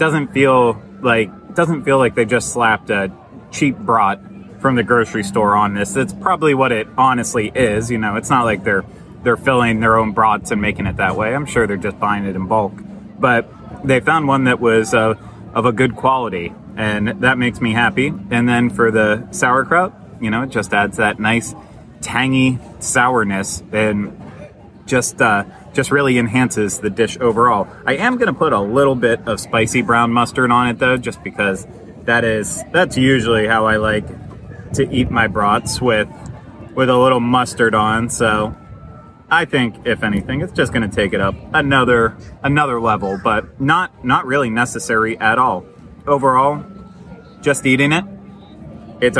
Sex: male